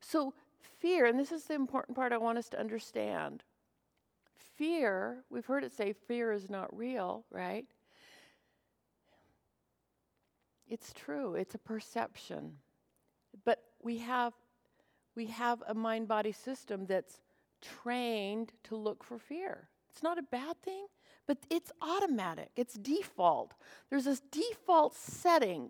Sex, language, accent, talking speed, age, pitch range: female, English, American, 130 wpm, 50-69, 235-350 Hz